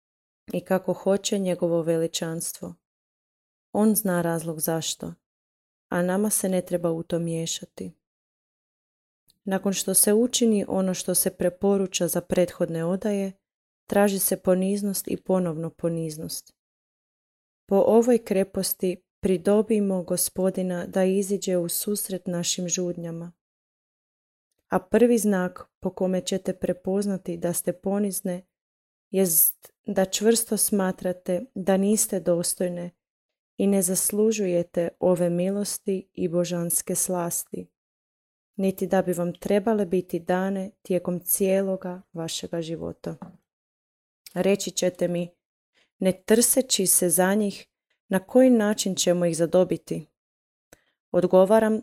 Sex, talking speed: female, 110 wpm